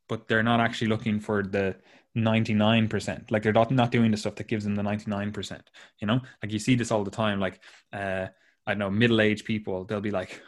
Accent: Irish